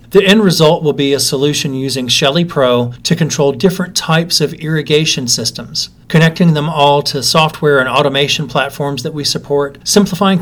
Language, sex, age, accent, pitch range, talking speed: English, male, 40-59, American, 130-160 Hz, 165 wpm